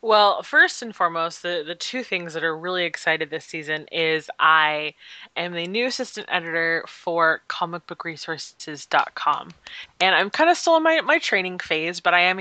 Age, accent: 20-39, American